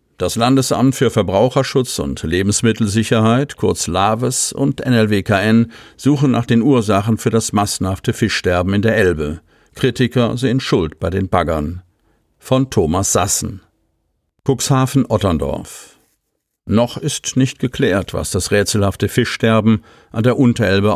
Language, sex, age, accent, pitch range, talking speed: German, male, 50-69, German, 100-125 Hz, 120 wpm